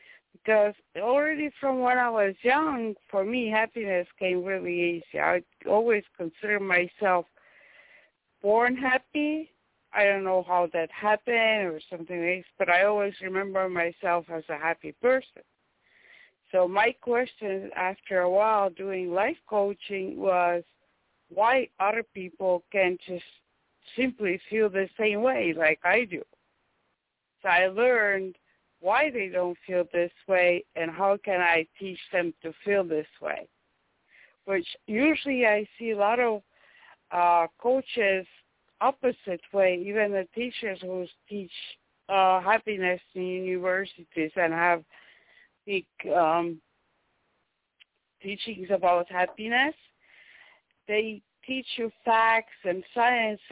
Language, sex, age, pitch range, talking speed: English, female, 60-79, 180-225 Hz, 125 wpm